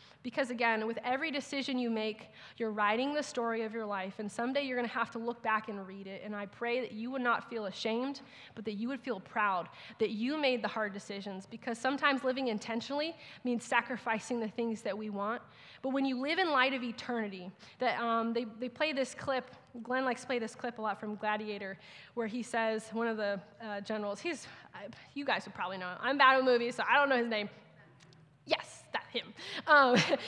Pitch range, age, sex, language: 215-255 Hz, 20-39, female, English